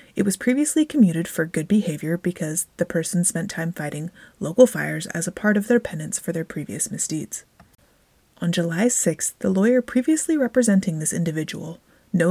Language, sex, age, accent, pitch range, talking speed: English, female, 30-49, American, 170-210 Hz, 170 wpm